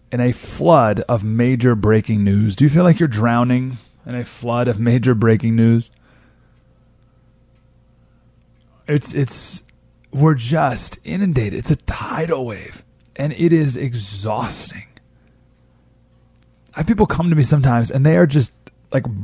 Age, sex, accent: 30-49, male, American